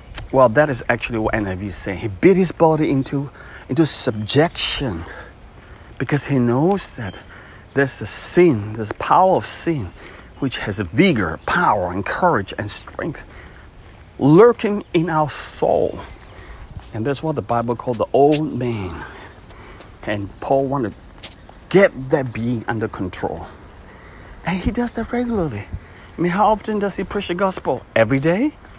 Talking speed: 155 wpm